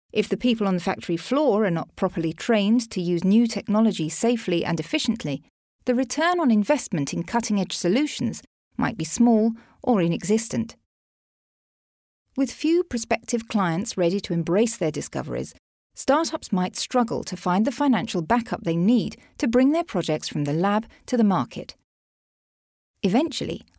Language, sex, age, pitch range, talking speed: English, female, 40-59, 170-245 Hz, 150 wpm